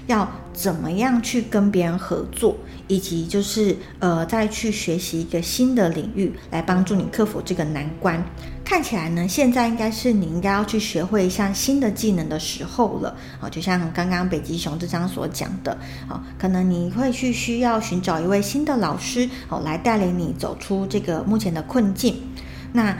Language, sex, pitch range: Chinese, female, 175-220 Hz